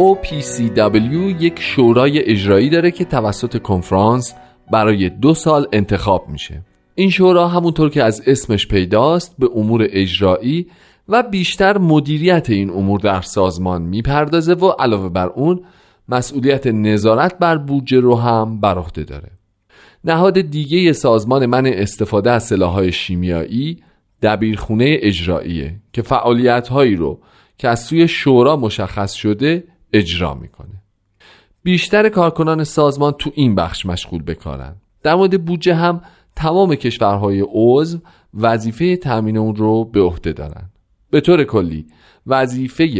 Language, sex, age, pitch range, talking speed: Persian, male, 40-59, 100-150 Hz, 125 wpm